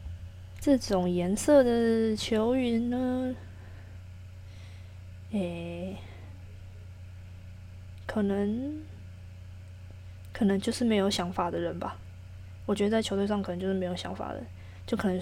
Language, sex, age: Chinese, female, 20-39